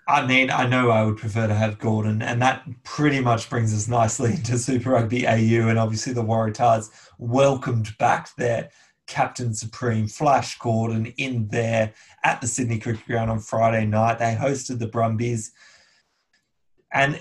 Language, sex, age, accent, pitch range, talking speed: English, male, 20-39, Australian, 115-140 Hz, 165 wpm